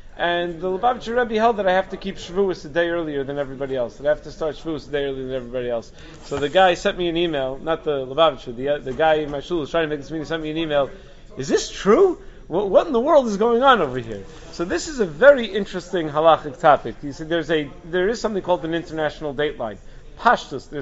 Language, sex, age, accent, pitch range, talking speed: English, male, 40-59, American, 145-185 Hz, 255 wpm